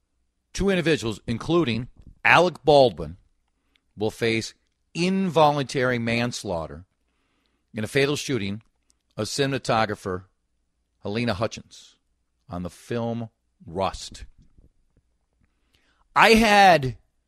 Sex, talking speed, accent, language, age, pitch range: male, 80 wpm, American, English, 40-59, 90-130 Hz